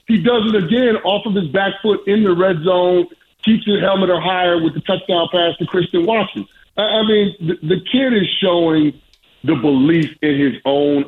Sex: male